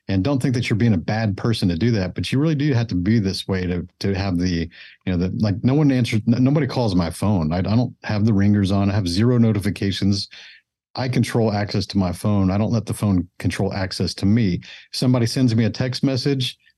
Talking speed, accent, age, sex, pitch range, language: 245 wpm, American, 50-69, male, 95-115 Hz, English